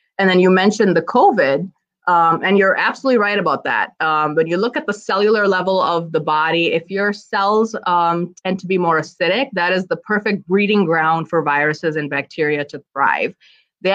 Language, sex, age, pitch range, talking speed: English, female, 20-39, 165-215 Hz, 200 wpm